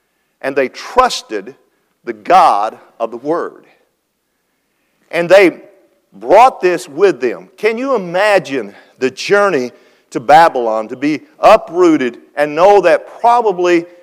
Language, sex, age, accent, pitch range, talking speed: English, male, 50-69, American, 135-210 Hz, 120 wpm